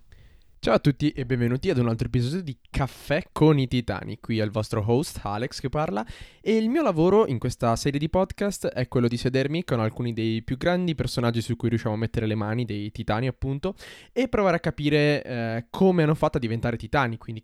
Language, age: Italian, 20-39